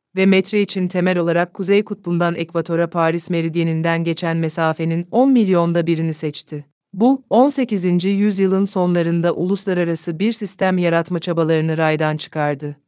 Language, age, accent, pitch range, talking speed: Polish, 30-49, Turkish, 165-195 Hz, 125 wpm